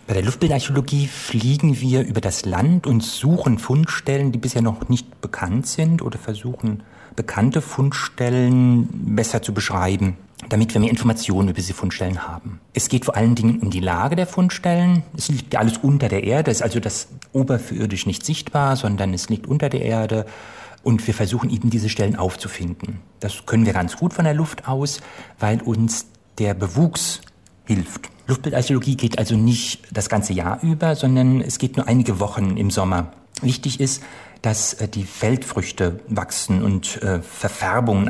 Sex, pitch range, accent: male, 100-130 Hz, German